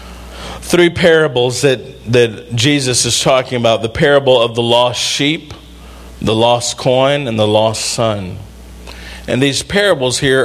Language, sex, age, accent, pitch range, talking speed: English, male, 50-69, American, 120-180 Hz, 145 wpm